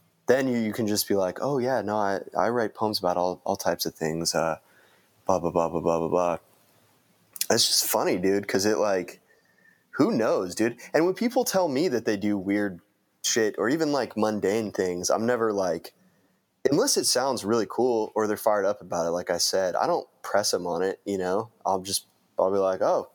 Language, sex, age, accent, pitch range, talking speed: English, male, 20-39, American, 95-125 Hz, 215 wpm